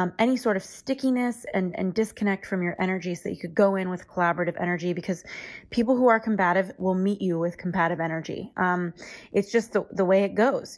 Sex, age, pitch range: female, 20-39, 180-205 Hz